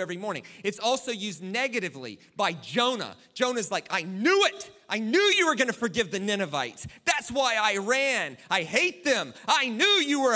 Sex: male